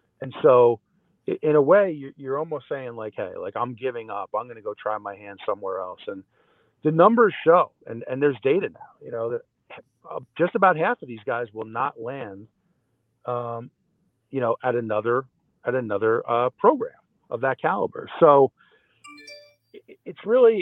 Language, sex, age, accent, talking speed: English, male, 40-59, American, 170 wpm